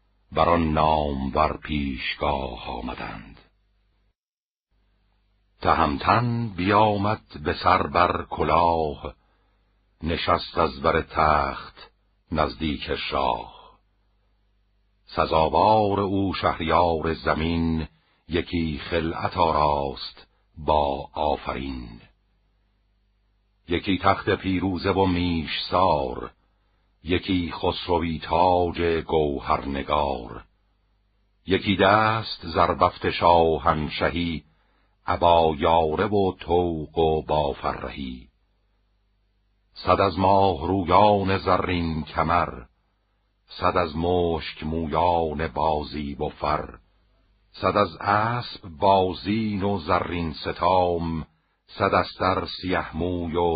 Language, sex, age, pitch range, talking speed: Persian, male, 60-79, 80-100 Hz, 75 wpm